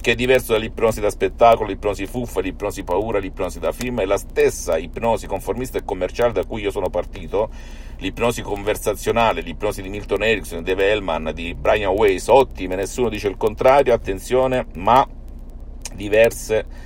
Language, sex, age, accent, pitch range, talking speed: Italian, male, 50-69, native, 90-115 Hz, 155 wpm